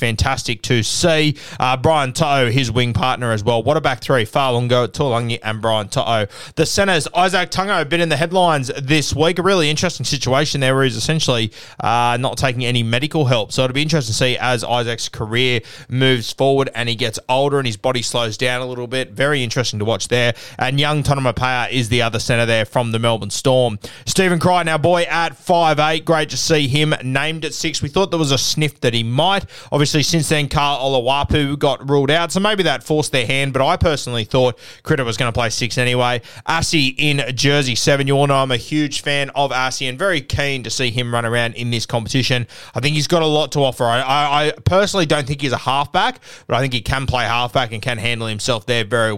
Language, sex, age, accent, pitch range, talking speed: English, male, 20-39, Australian, 120-150 Hz, 225 wpm